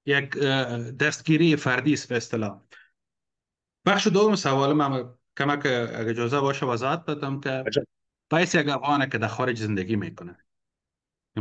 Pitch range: 110-140 Hz